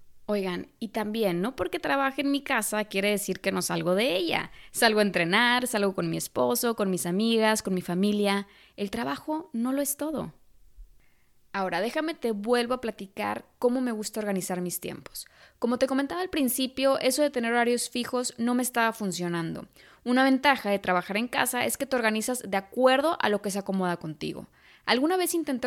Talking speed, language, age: 190 wpm, Spanish, 20-39